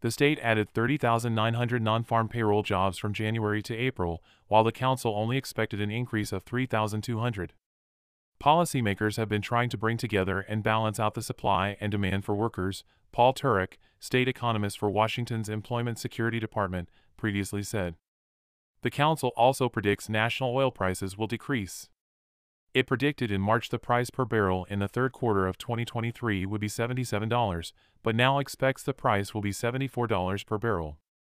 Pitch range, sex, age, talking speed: 95-120 Hz, male, 30-49, 160 wpm